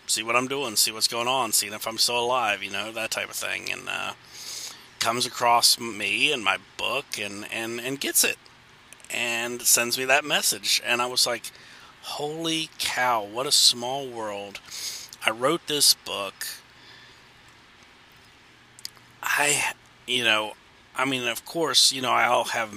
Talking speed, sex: 165 wpm, male